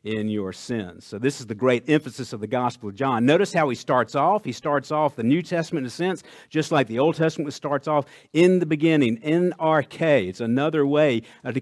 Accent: American